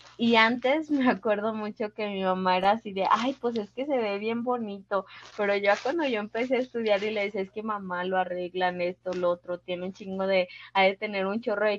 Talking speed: 240 wpm